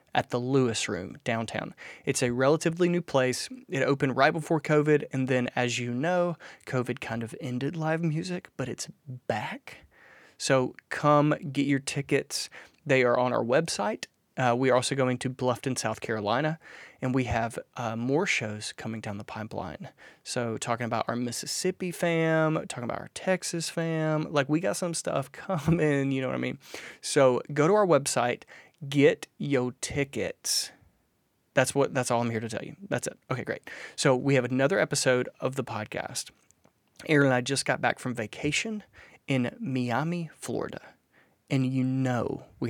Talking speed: 175 wpm